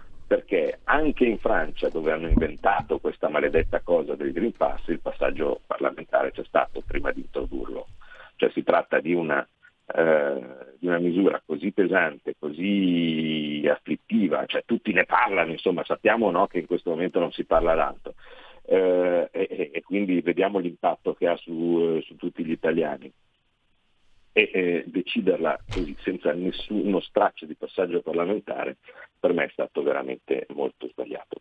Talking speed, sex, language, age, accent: 150 wpm, male, Italian, 50-69, native